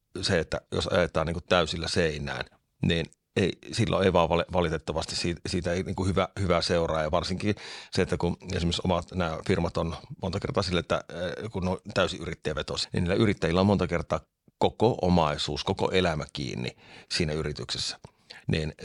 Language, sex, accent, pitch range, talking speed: Finnish, male, native, 80-95 Hz, 165 wpm